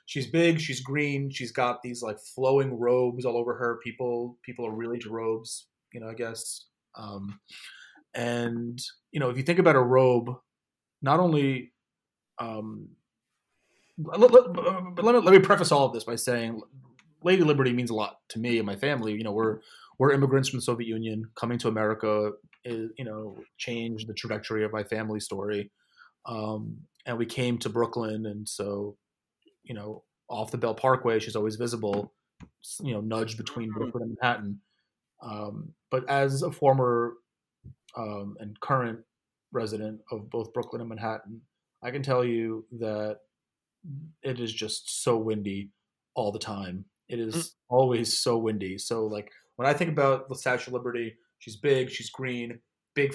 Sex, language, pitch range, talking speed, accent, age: male, English, 110-130 Hz, 170 wpm, American, 30-49